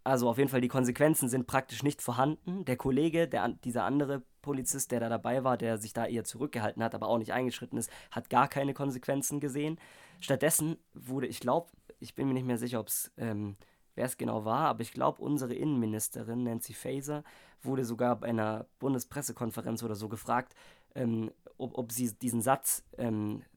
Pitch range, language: 115-135 Hz, German